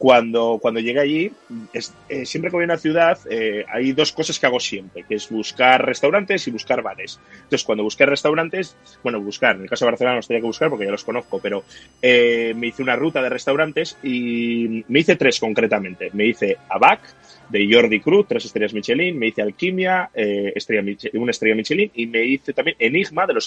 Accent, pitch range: Spanish, 120-185 Hz